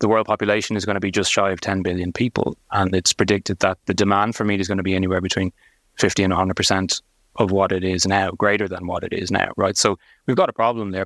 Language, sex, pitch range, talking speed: English, male, 95-110 Hz, 260 wpm